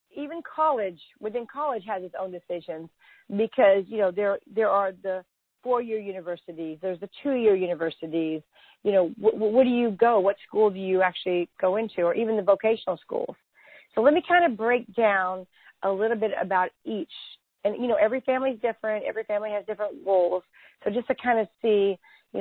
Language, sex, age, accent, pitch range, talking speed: English, female, 40-59, American, 190-230 Hz, 195 wpm